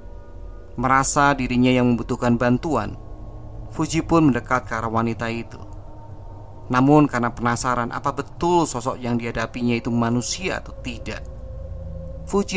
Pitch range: 105-130 Hz